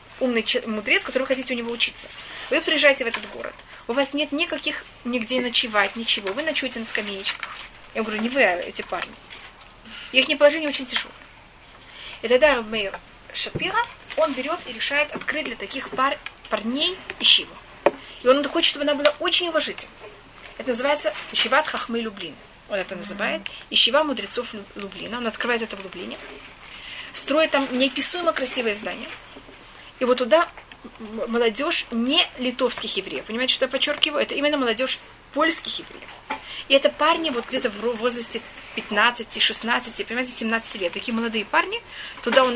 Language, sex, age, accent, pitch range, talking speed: Russian, female, 20-39, native, 225-285 Hz, 155 wpm